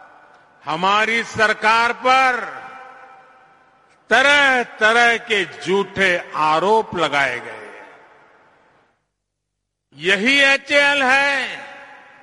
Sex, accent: male, Indian